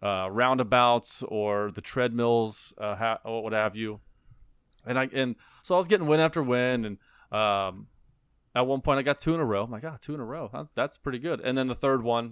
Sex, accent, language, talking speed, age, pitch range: male, American, English, 215 wpm, 30-49, 105-125 Hz